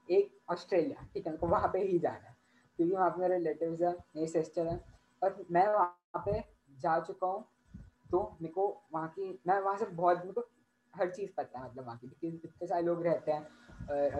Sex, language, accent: female, Hindi, native